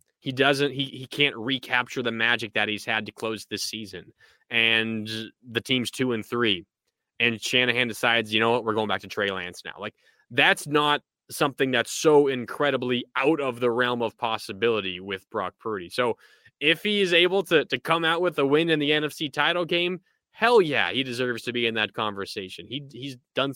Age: 20-39